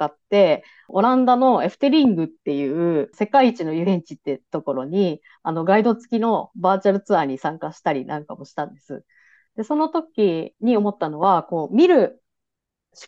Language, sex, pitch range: Japanese, female, 160-235 Hz